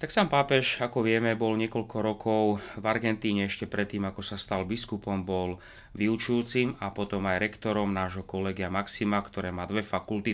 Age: 30-49